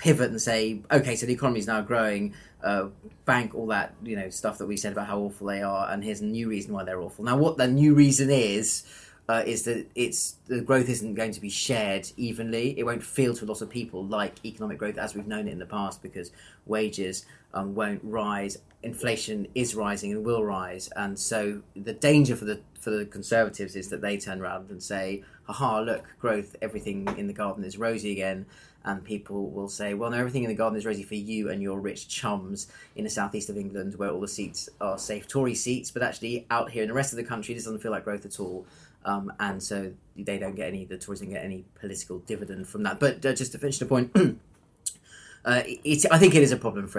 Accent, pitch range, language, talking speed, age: British, 100-115 Hz, English, 240 wpm, 30-49